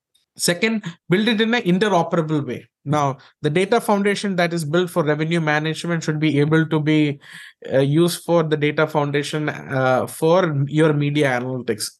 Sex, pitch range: male, 140-180 Hz